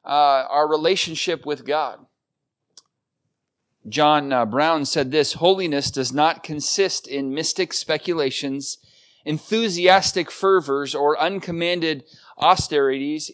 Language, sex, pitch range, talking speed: English, male, 140-170 Hz, 100 wpm